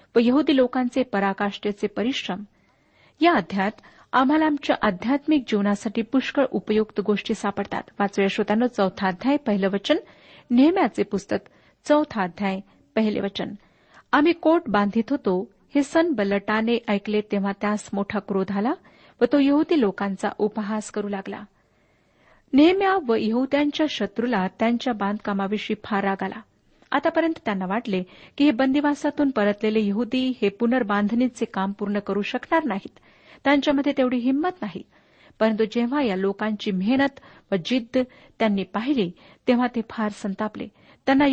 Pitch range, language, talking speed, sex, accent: 205-275 Hz, Marathi, 125 wpm, female, native